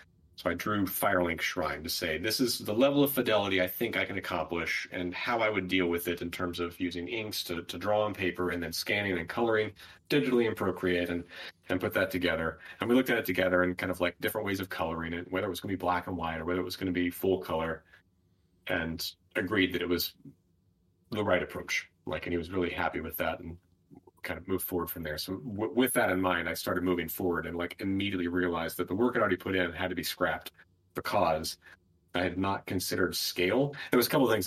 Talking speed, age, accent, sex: 245 wpm, 30-49, American, male